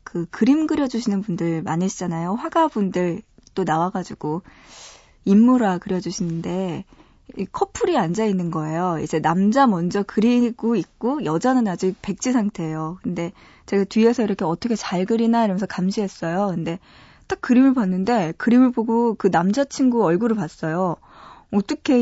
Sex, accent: female, native